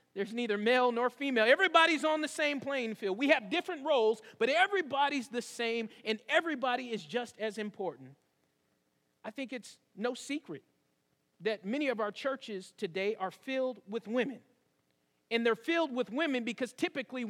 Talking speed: 165 wpm